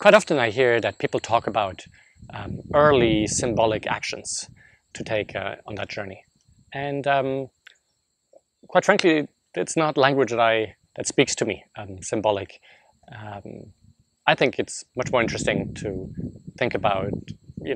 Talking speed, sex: 150 wpm, male